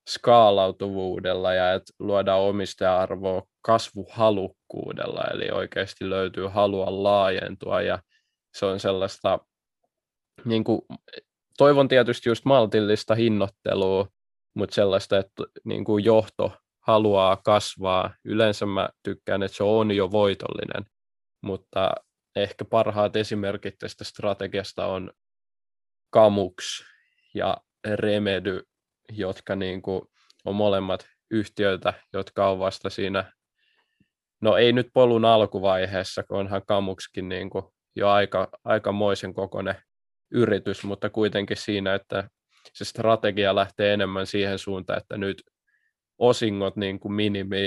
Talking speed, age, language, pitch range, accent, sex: 110 wpm, 20-39, Finnish, 95-105 Hz, native, male